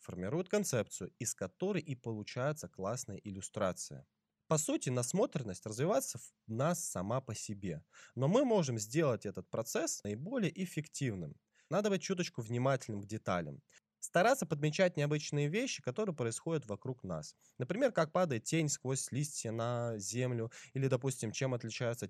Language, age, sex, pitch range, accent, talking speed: Russian, 20-39, male, 115-155 Hz, native, 140 wpm